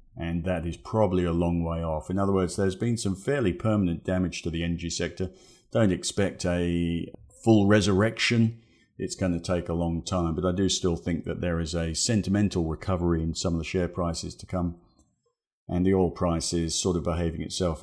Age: 50-69